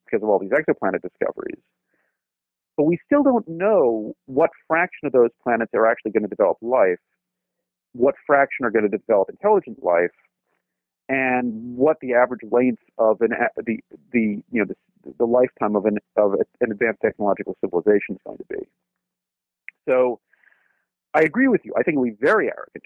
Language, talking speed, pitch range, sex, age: English, 175 wpm, 115-190 Hz, male, 40-59